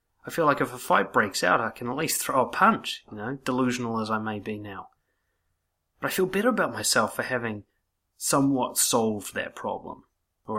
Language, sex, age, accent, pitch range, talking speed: English, male, 30-49, Australian, 110-145 Hz, 205 wpm